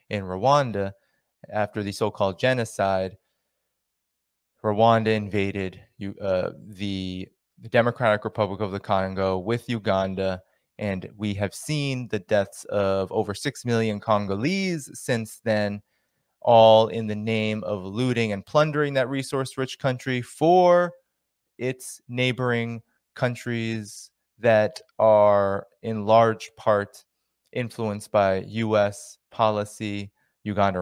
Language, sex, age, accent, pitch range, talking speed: English, male, 20-39, American, 100-125 Hz, 110 wpm